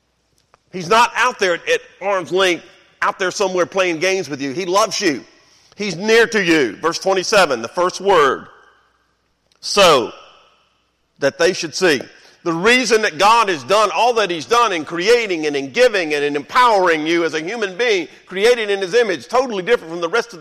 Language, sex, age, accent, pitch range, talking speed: English, male, 50-69, American, 135-205 Hz, 190 wpm